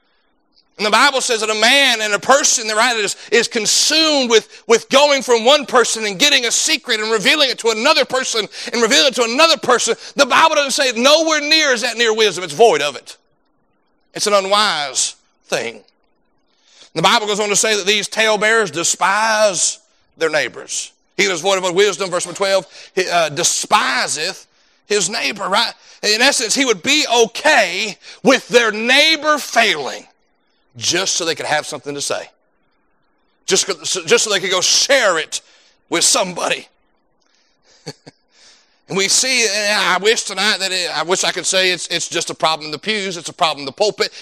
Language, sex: English, male